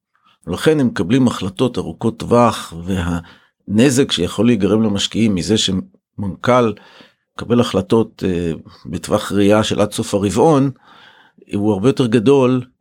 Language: Hebrew